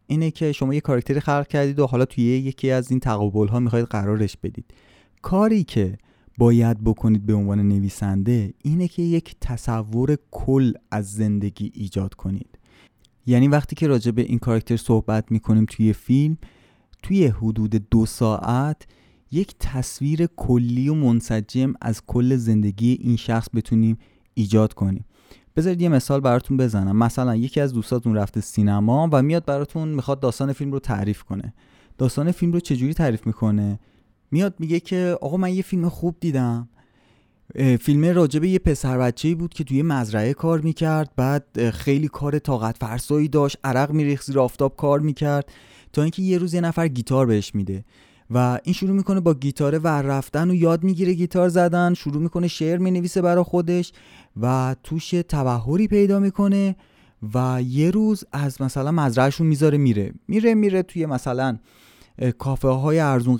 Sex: male